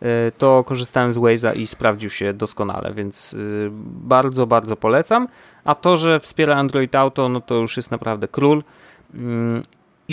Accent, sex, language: native, male, Polish